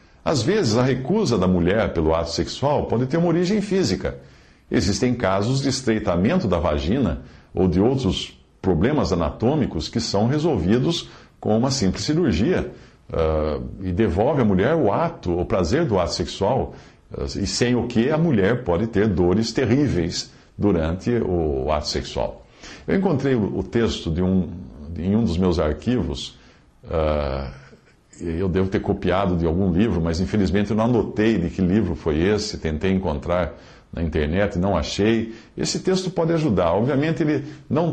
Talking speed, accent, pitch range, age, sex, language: 165 wpm, Brazilian, 90-125 Hz, 50-69, male, Portuguese